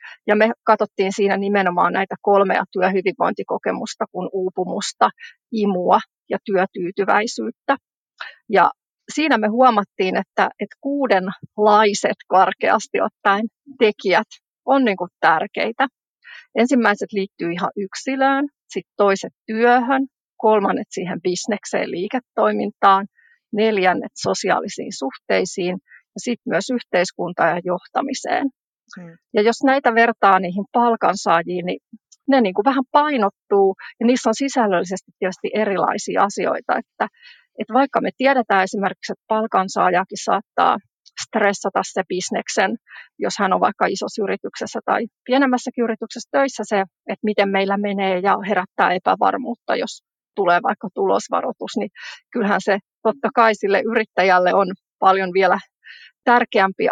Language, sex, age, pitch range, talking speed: Finnish, female, 40-59, 190-240 Hz, 115 wpm